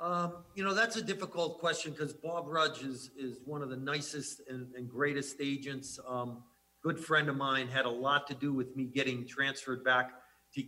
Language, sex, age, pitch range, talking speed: English, male, 40-59, 135-160 Hz, 200 wpm